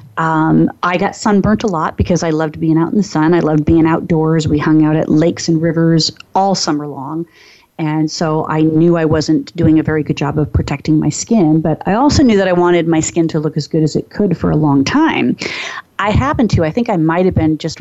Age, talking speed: 30-49, 245 wpm